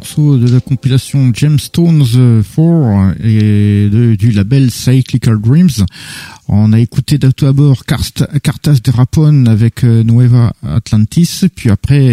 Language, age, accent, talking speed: French, 50-69, French, 120 wpm